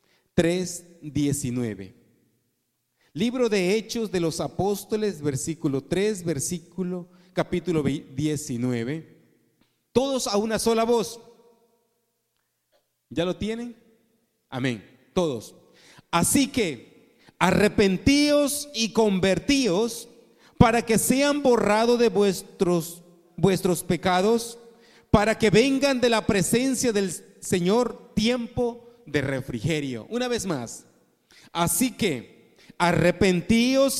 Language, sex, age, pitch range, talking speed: Spanish, male, 40-59, 140-230 Hz, 95 wpm